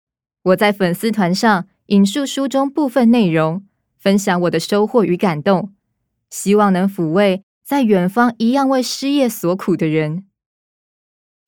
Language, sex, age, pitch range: Chinese, female, 20-39, 180-225 Hz